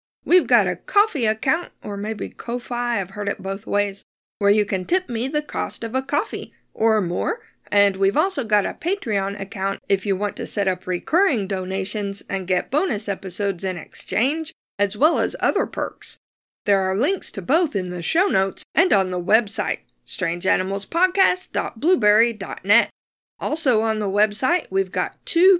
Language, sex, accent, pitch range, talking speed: English, female, American, 195-275 Hz, 170 wpm